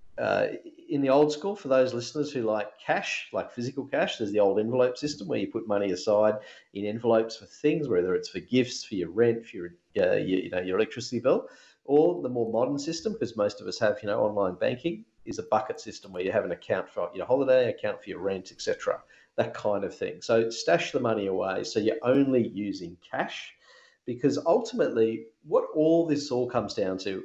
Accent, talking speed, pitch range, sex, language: Australian, 215 wpm, 100-160 Hz, male, English